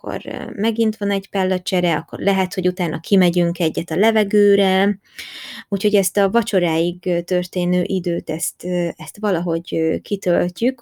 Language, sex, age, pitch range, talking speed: Hungarian, female, 20-39, 170-195 Hz, 130 wpm